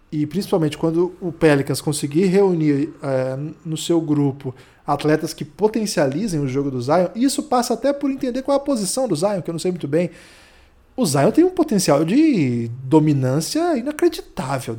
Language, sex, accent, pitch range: Portuguese, male, Brazilian, 140-170 Hz